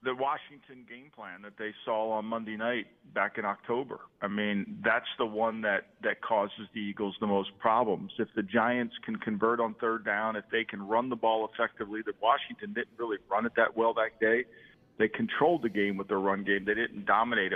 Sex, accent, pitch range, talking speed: male, American, 110-125 Hz, 210 wpm